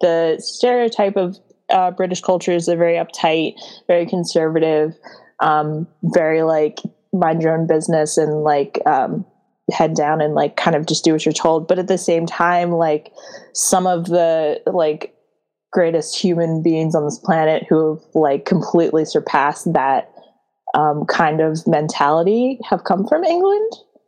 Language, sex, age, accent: English, female, 20-39, American